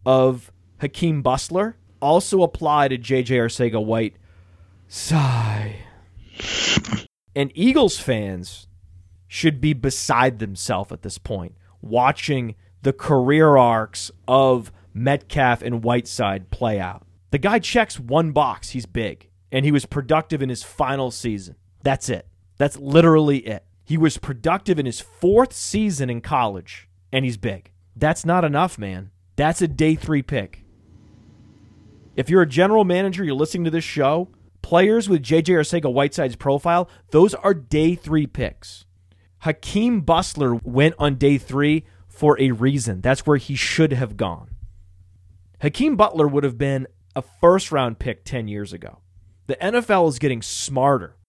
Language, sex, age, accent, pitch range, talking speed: English, male, 30-49, American, 100-150 Hz, 145 wpm